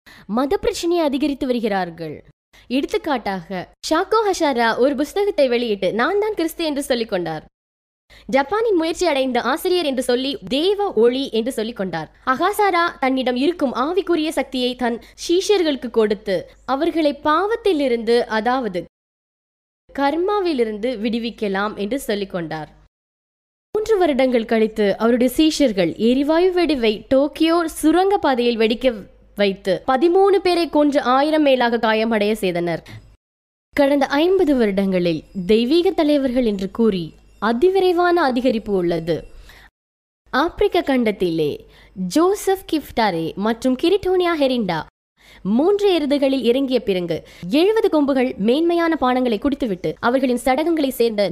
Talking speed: 90 wpm